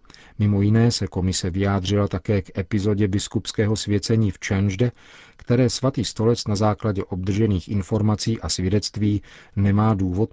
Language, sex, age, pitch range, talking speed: Czech, male, 40-59, 95-115 Hz, 135 wpm